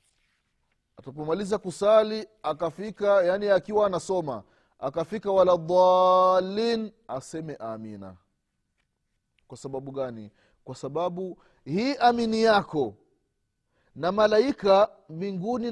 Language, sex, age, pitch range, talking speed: Swahili, male, 30-49, 115-195 Hz, 85 wpm